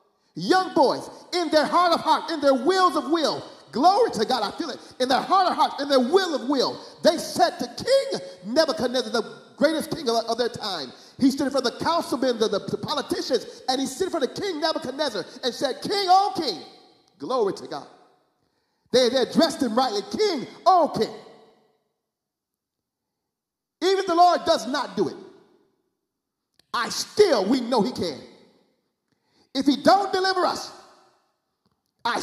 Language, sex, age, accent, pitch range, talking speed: English, male, 40-59, American, 260-370 Hz, 170 wpm